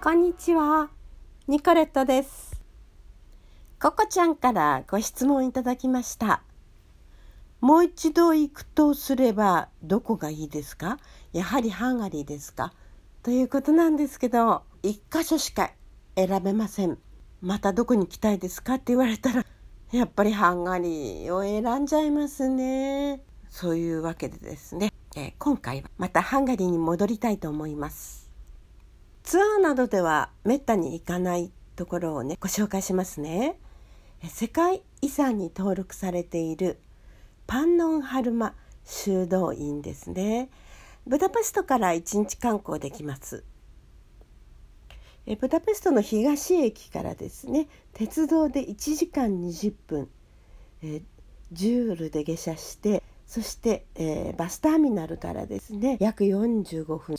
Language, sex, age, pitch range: Japanese, female, 50-69, 175-275 Hz